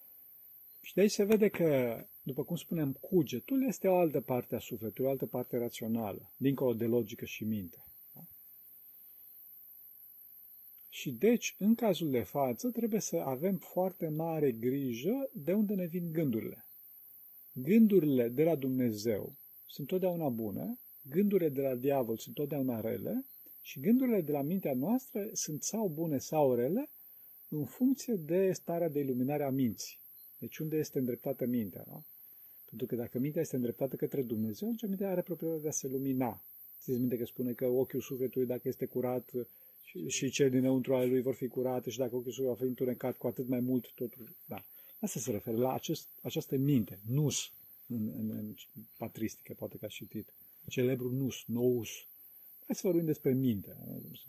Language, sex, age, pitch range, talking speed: Romanian, male, 40-59, 125-170 Hz, 170 wpm